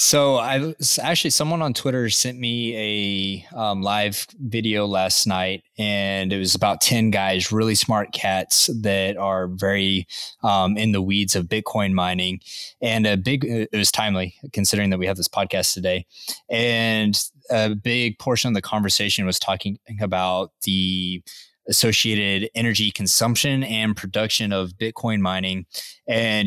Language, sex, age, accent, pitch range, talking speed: English, male, 20-39, American, 95-115 Hz, 150 wpm